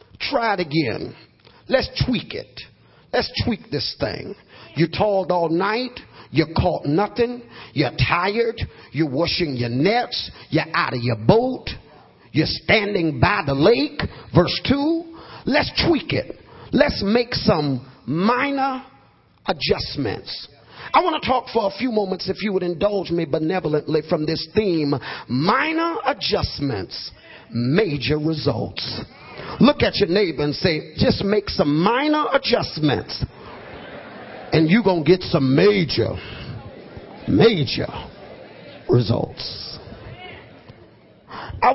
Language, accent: English, American